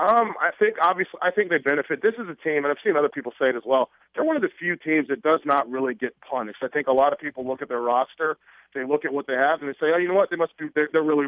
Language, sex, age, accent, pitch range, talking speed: English, male, 30-49, American, 145-180 Hz, 340 wpm